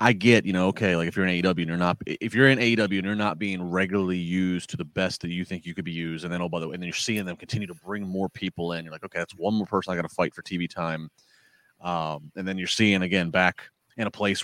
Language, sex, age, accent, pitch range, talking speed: English, male, 30-49, American, 90-120 Hz, 305 wpm